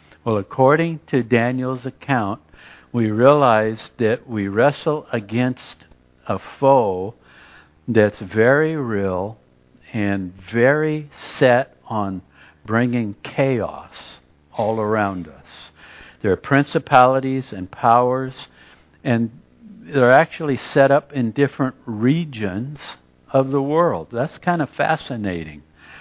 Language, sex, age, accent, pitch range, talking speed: English, male, 60-79, American, 105-140 Hz, 105 wpm